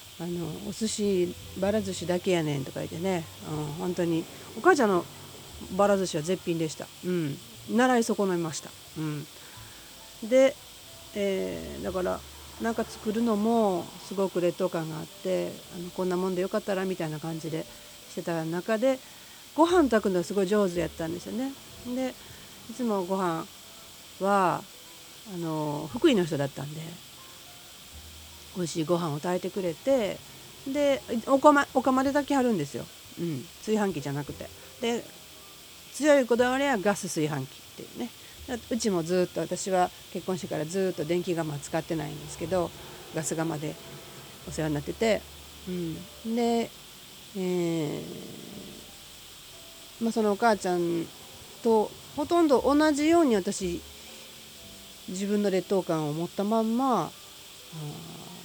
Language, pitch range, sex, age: Japanese, 160-220 Hz, female, 40-59